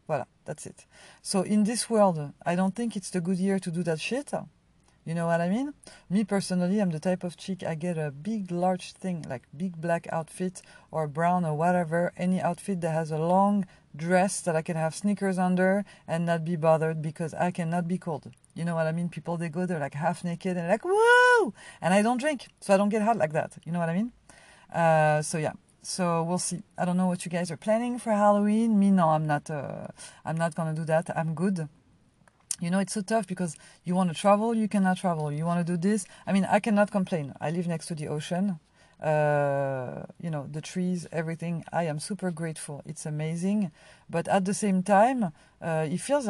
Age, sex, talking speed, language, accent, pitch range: 40-59, female, 225 wpm, English, French, 165-195 Hz